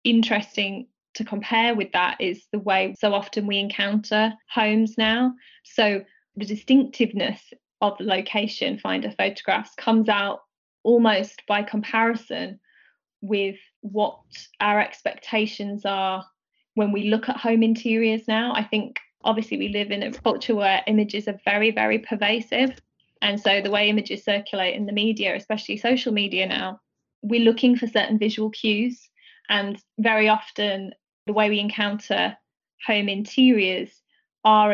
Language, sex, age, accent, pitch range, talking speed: English, female, 20-39, British, 205-230 Hz, 140 wpm